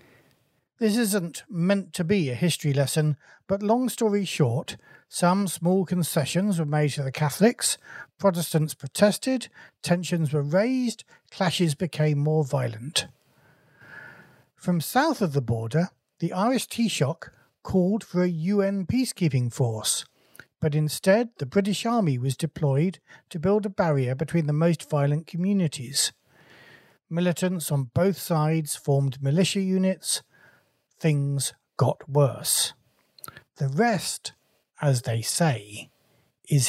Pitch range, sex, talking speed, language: 145-195 Hz, male, 125 wpm, English